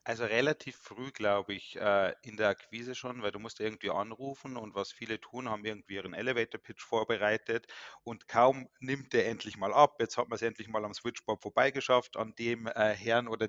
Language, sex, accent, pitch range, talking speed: German, male, German, 110-135 Hz, 190 wpm